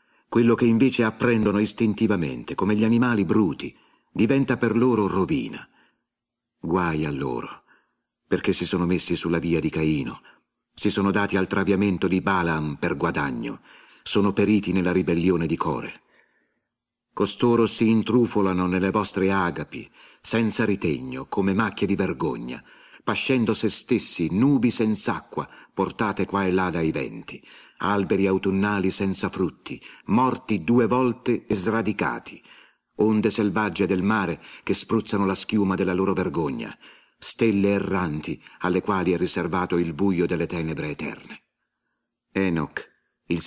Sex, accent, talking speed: male, native, 130 wpm